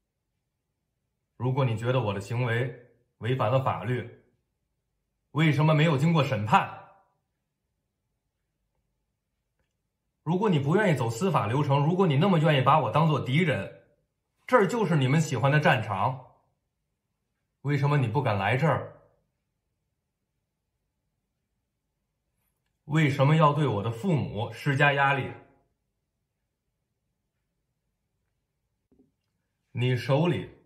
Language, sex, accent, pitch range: English, male, Chinese, 115-160 Hz